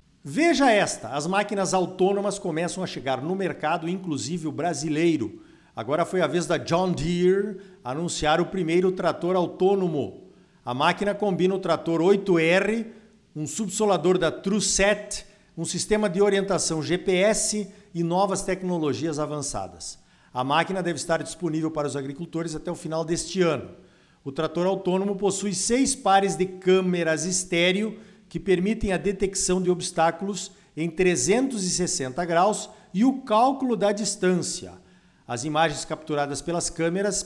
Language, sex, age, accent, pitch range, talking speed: Portuguese, male, 50-69, Brazilian, 165-205 Hz, 135 wpm